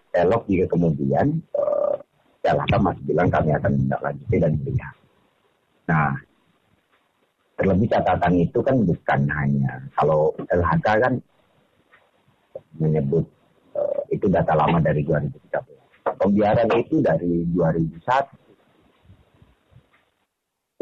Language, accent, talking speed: Indonesian, native, 100 wpm